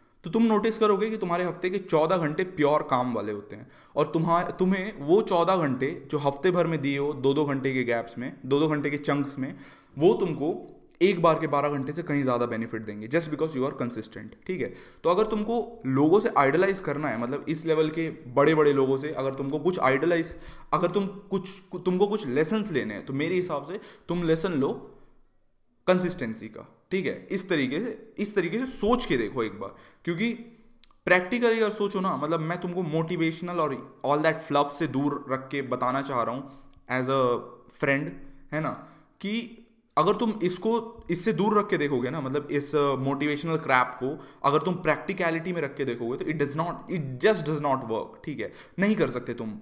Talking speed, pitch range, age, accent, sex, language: 210 wpm, 135-185 Hz, 20-39, native, male, Hindi